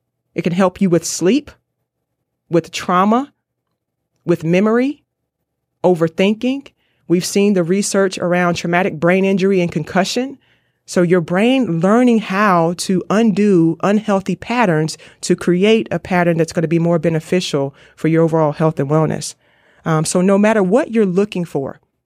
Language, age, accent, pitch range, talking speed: English, 30-49, American, 165-195 Hz, 145 wpm